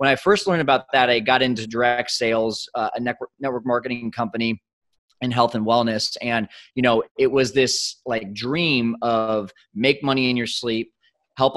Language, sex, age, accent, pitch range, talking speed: English, male, 20-39, American, 115-135 Hz, 185 wpm